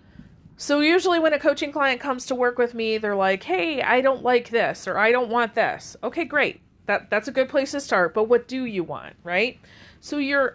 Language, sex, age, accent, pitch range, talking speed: English, female, 40-59, American, 195-245 Hz, 230 wpm